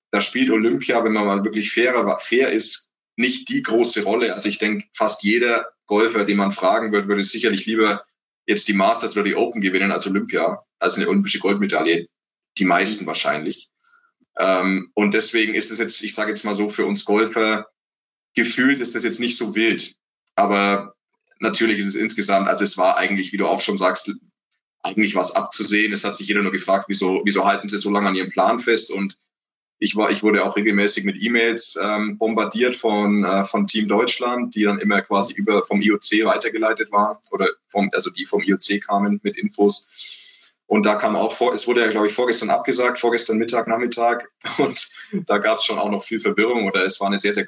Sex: male